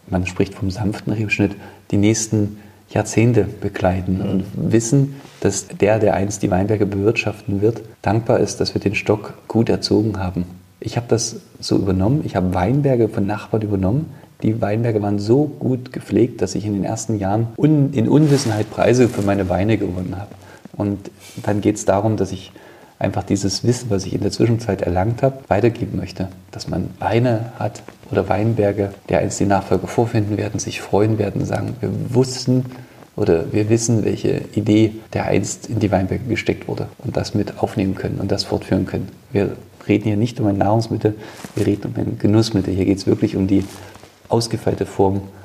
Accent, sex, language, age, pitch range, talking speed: German, male, German, 40-59, 100-115 Hz, 180 wpm